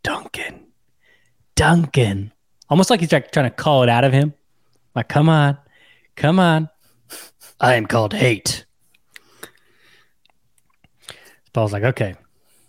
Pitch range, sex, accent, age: 115-145 Hz, male, American, 20-39